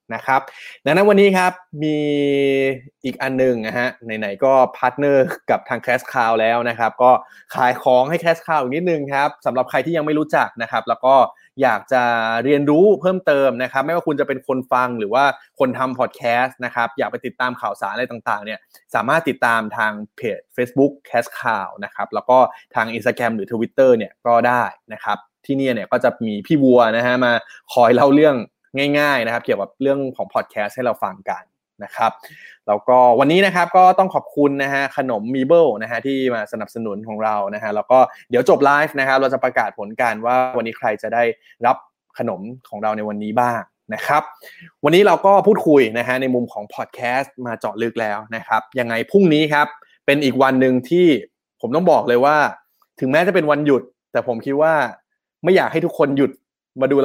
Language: Thai